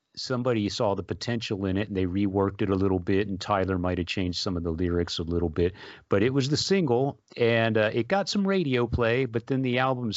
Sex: male